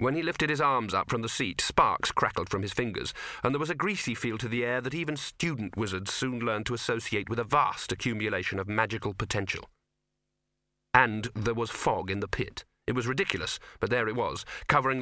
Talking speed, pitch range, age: 210 wpm, 100-140 Hz, 40-59